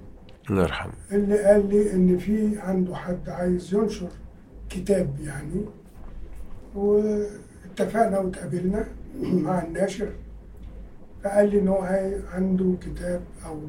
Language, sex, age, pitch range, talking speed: Arabic, male, 50-69, 165-200 Hz, 95 wpm